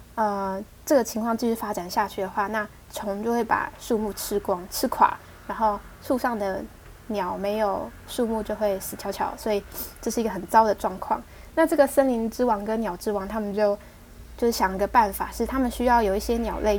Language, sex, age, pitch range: Chinese, female, 10-29, 200-240 Hz